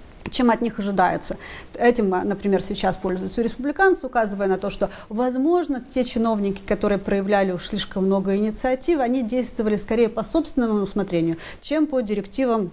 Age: 30-49